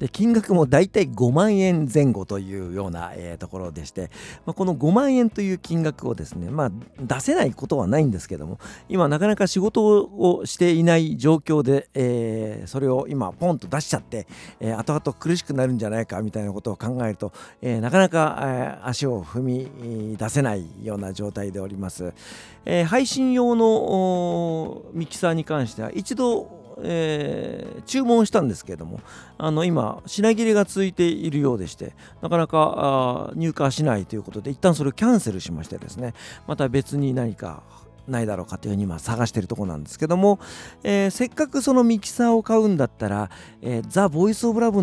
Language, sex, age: Japanese, male, 50-69